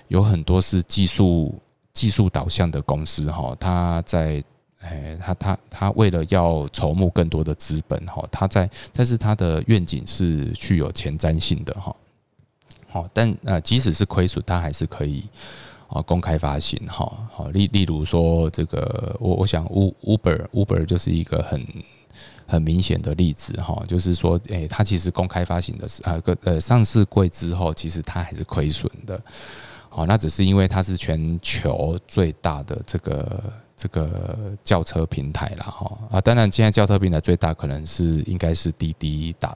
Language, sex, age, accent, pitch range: Chinese, male, 20-39, native, 80-100 Hz